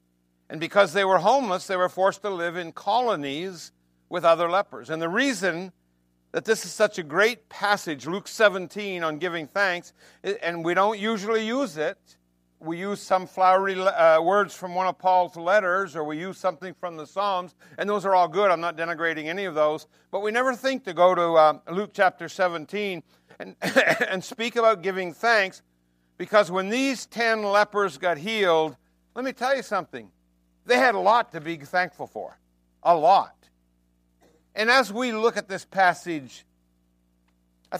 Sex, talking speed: male, 180 wpm